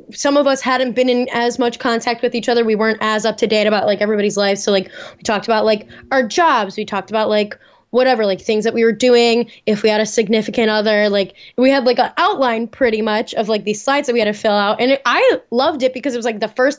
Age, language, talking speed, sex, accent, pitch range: 10-29, English, 270 wpm, female, American, 210-245 Hz